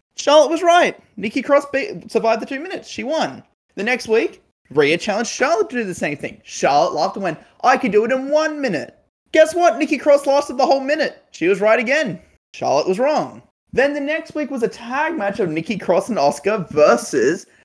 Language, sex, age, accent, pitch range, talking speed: English, male, 20-39, Australian, 170-275 Hz, 210 wpm